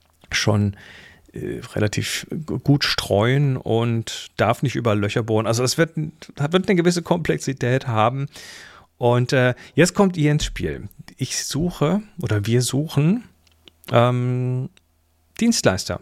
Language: German